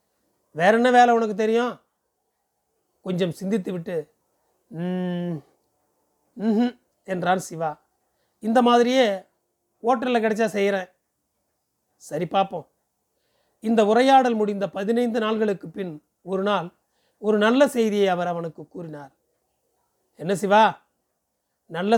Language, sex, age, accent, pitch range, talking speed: Tamil, male, 30-49, native, 180-230 Hz, 95 wpm